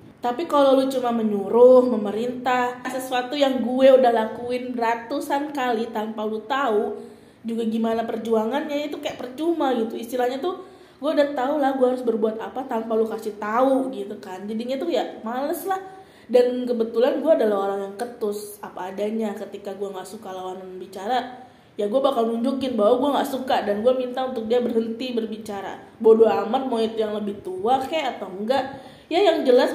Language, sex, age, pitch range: Indonesian, female, 20-39, 220-265 Hz